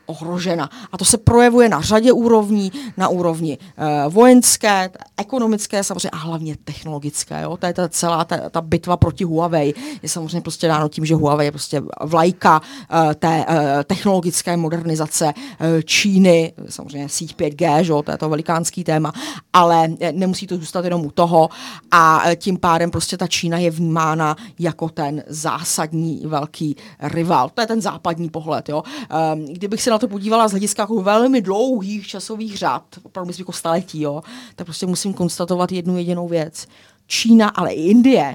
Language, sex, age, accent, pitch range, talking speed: Czech, female, 40-59, native, 160-195 Hz, 165 wpm